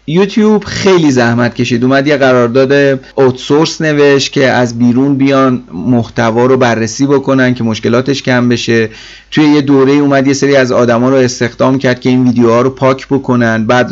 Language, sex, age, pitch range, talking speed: Persian, male, 30-49, 120-145 Hz, 170 wpm